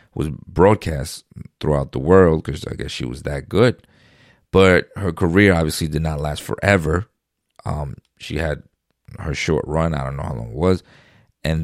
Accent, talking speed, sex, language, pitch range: American, 175 wpm, male, English, 75-95 Hz